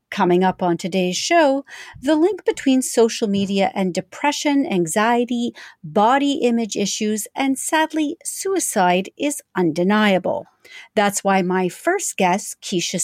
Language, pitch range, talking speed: English, 190-295 Hz, 125 wpm